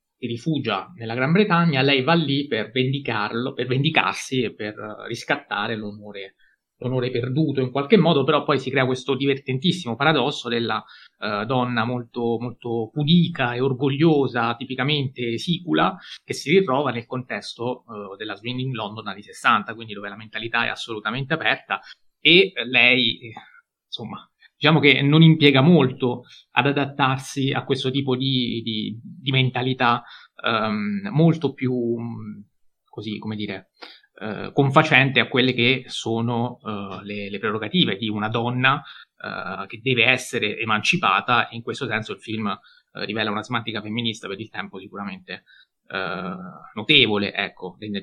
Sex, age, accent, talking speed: male, 30-49, native, 145 wpm